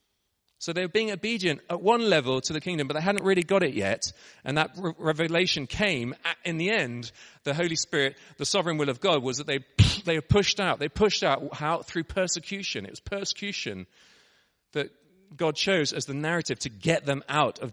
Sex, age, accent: male, 40-59, British